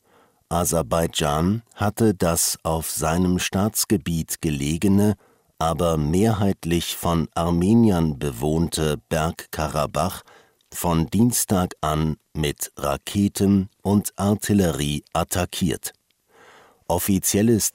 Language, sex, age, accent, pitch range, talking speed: English, male, 50-69, German, 80-100 Hz, 75 wpm